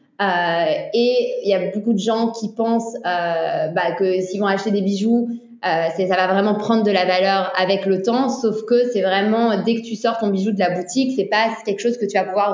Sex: female